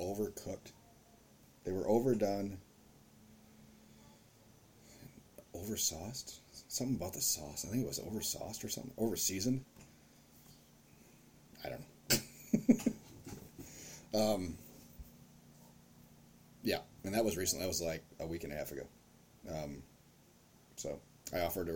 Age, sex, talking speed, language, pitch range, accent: 30-49, male, 110 wpm, English, 85-110 Hz, American